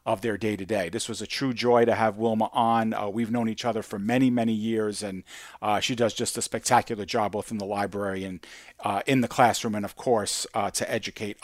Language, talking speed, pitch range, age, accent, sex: English, 230 wpm, 110-130 Hz, 50-69, American, male